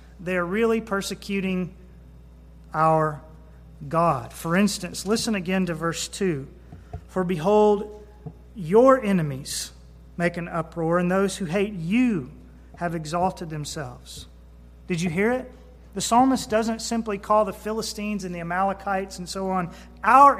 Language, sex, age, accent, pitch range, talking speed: English, male, 40-59, American, 165-225 Hz, 130 wpm